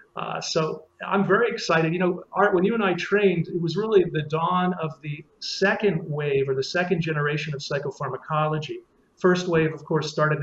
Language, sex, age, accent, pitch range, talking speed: English, male, 40-59, American, 145-180 Hz, 190 wpm